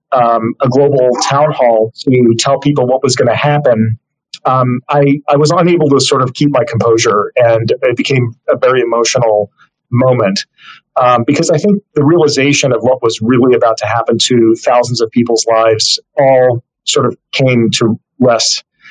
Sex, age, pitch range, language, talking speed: male, 40-59, 120-150 Hz, English, 175 wpm